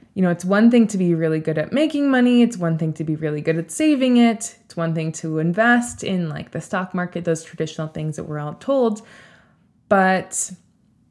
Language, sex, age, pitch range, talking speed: English, female, 20-39, 160-185 Hz, 215 wpm